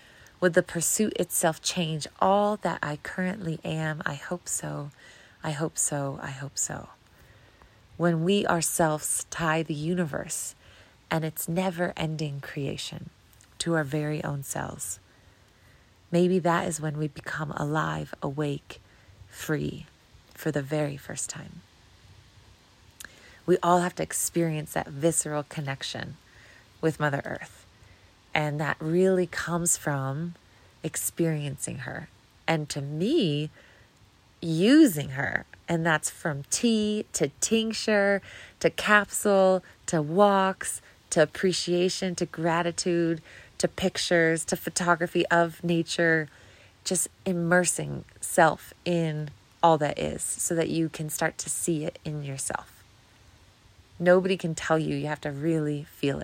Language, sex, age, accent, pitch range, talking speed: English, female, 30-49, American, 140-175 Hz, 125 wpm